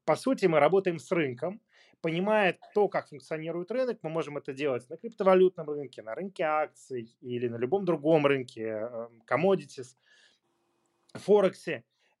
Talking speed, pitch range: 140 wpm, 130-185 Hz